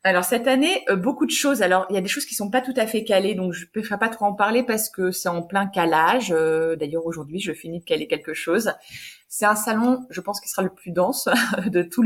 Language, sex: French, female